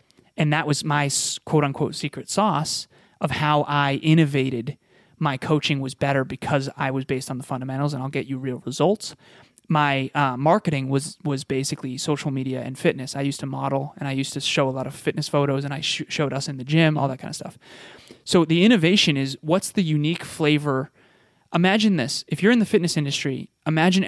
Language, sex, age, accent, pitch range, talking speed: English, male, 20-39, American, 135-175 Hz, 205 wpm